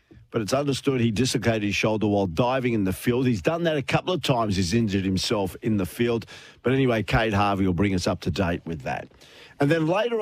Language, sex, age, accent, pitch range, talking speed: English, male, 50-69, Australian, 105-140 Hz, 235 wpm